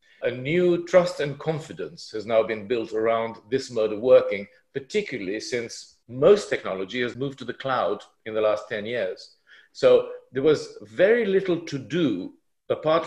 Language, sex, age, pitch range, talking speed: English, male, 50-69, 120-190 Hz, 165 wpm